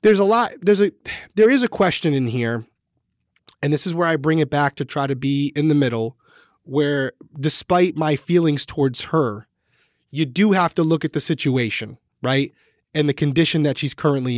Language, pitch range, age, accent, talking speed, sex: English, 130-165 Hz, 30-49, American, 195 wpm, male